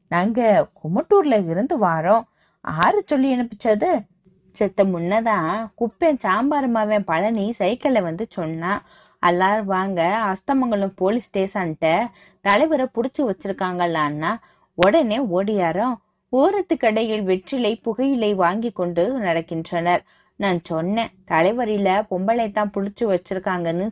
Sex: female